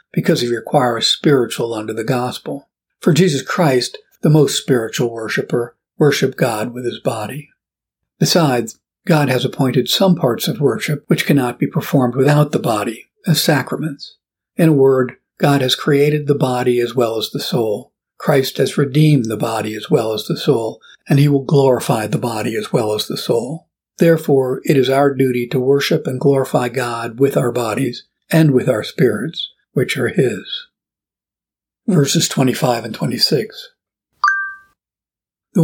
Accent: American